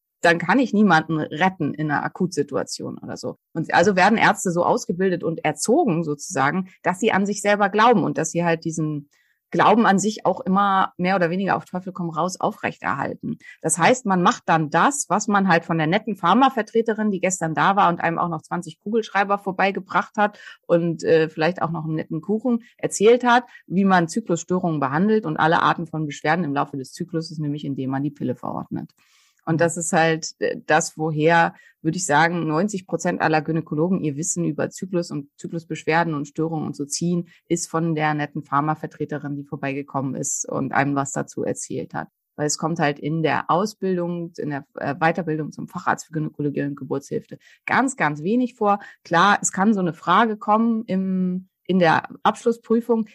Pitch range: 155-200 Hz